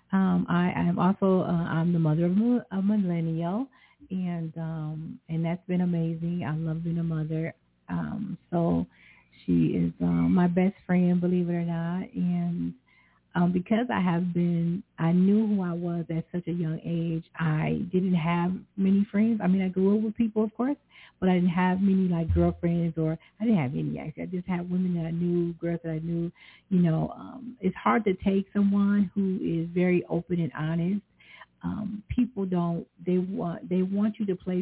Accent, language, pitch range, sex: American, English, 160-195 Hz, female